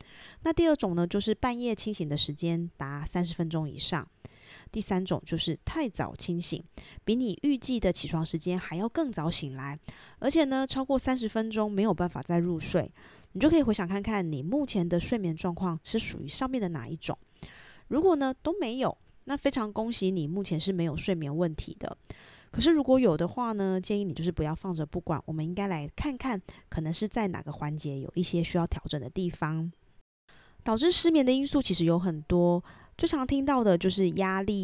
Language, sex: Chinese, female